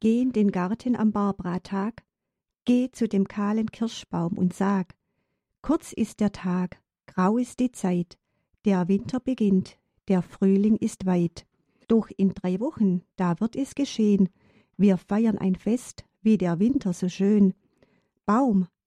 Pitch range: 185-230 Hz